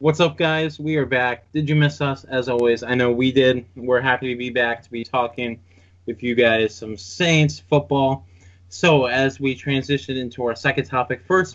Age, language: 20-39, English